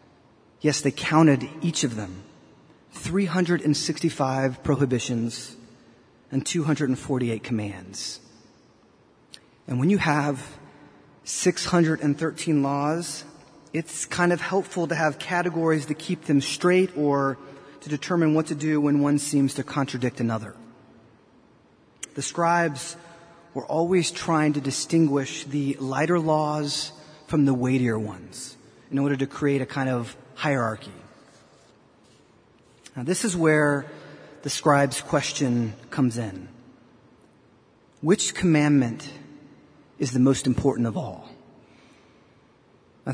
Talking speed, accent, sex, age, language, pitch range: 110 wpm, American, male, 30-49, English, 135-160 Hz